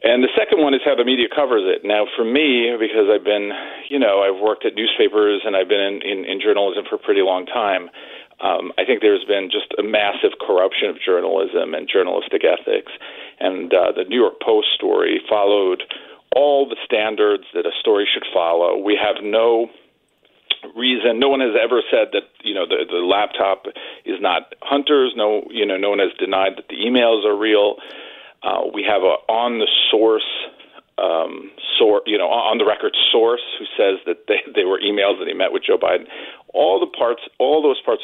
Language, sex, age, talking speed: English, male, 40-59, 195 wpm